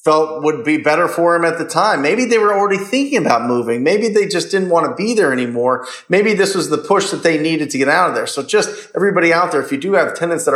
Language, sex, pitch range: English, male, 140-185 Hz